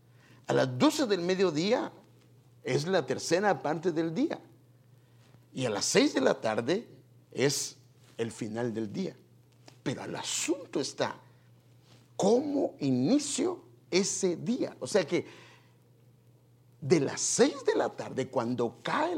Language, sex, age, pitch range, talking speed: English, male, 50-69, 120-165 Hz, 130 wpm